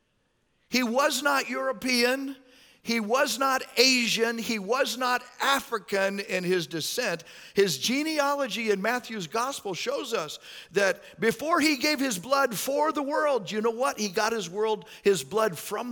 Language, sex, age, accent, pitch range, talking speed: English, male, 50-69, American, 165-245 Hz, 155 wpm